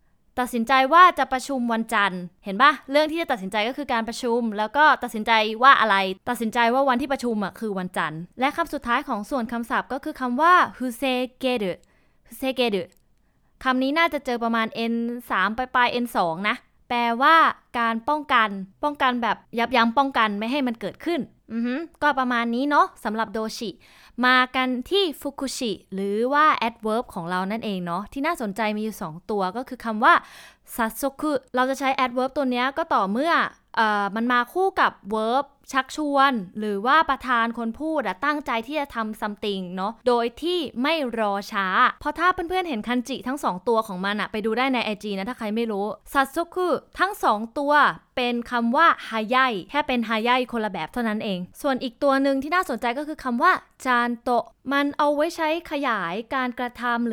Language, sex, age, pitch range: Thai, female, 20-39, 220-275 Hz